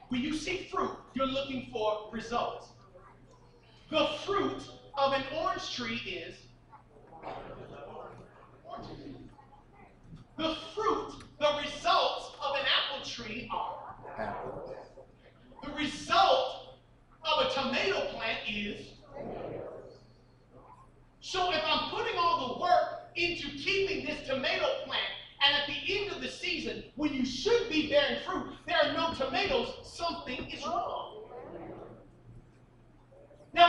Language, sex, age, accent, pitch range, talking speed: English, male, 40-59, American, 245-345 Hz, 115 wpm